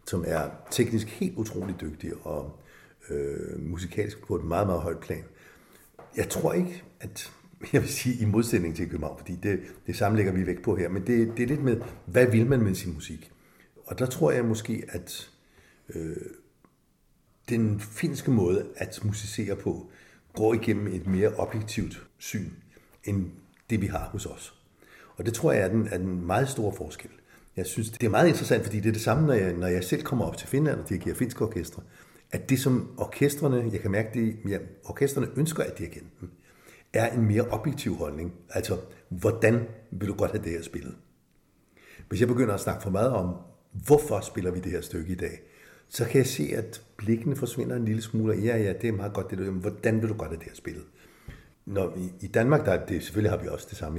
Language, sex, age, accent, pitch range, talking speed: Danish, male, 60-79, native, 90-115 Hz, 210 wpm